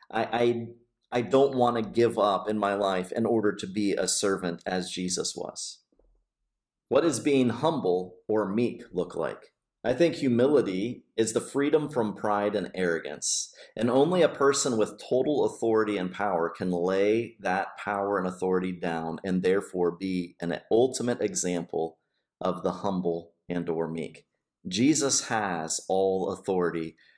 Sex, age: male, 30-49